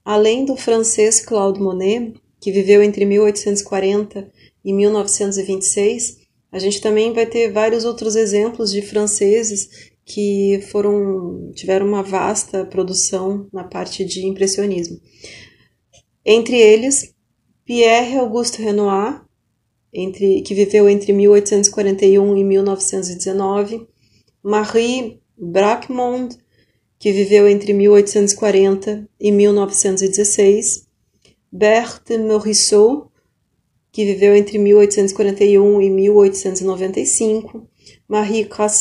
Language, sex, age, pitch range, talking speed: Portuguese, female, 30-49, 195-215 Hz, 85 wpm